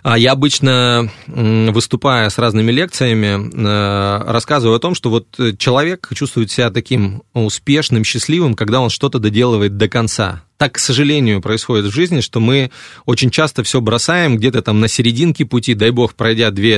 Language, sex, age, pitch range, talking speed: Russian, male, 20-39, 110-135 Hz, 160 wpm